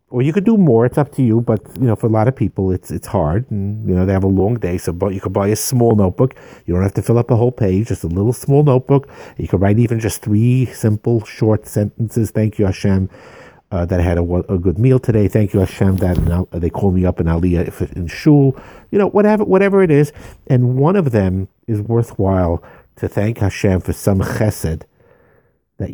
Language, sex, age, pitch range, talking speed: English, male, 50-69, 90-120 Hz, 240 wpm